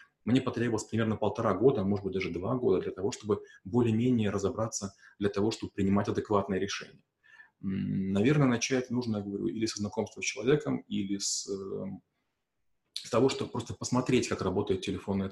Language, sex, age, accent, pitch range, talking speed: Russian, male, 30-49, native, 105-125 Hz, 160 wpm